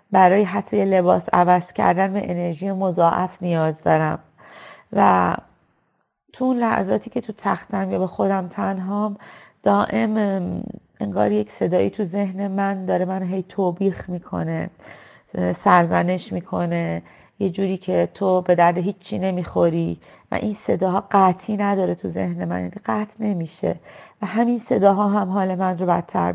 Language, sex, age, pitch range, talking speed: English, female, 30-49, 175-210 Hz, 135 wpm